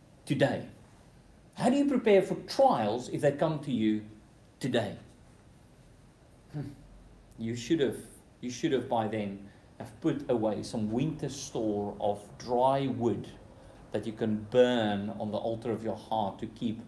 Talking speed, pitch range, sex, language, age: 155 wpm, 110-145 Hz, male, English, 40-59